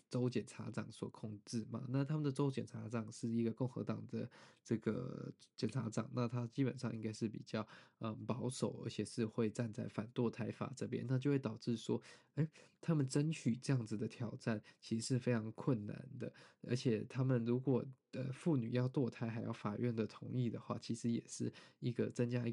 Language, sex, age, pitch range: Chinese, male, 20-39, 115-130 Hz